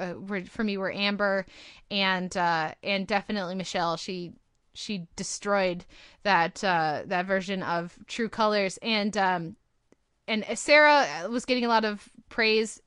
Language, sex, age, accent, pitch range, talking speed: English, female, 20-39, American, 195-235 Hz, 140 wpm